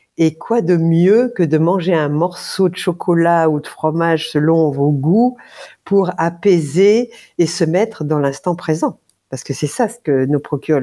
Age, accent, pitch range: 50-69, French, 150-195 Hz